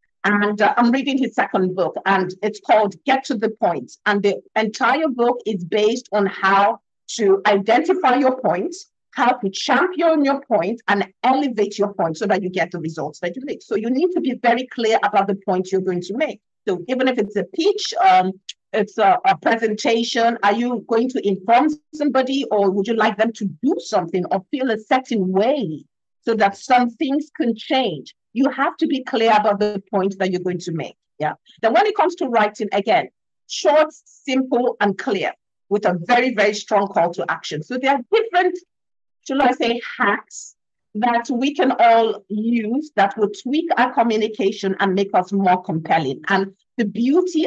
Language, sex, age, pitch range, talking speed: English, female, 50-69, 200-270 Hz, 195 wpm